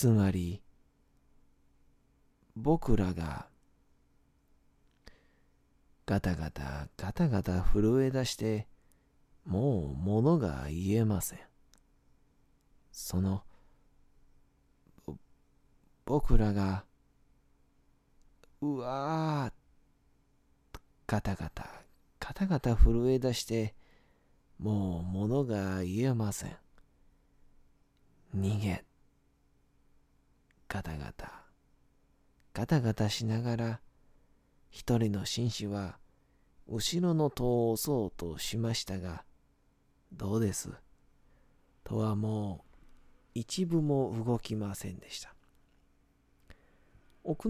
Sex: male